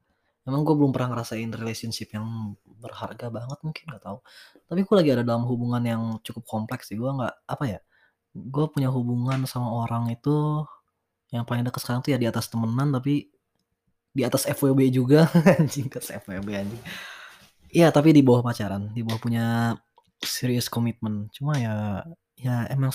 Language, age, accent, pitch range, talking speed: Indonesian, 20-39, native, 115-140 Hz, 165 wpm